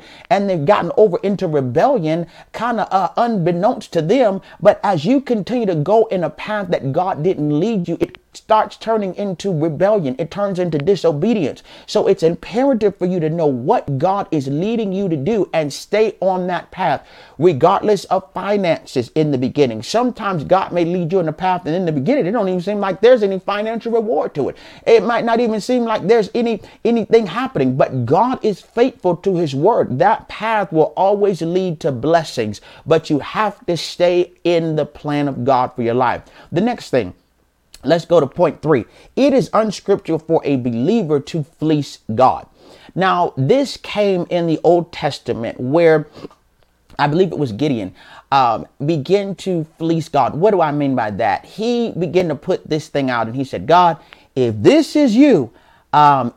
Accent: American